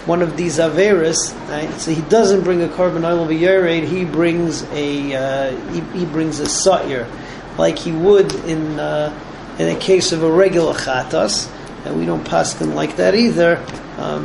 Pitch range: 155-200 Hz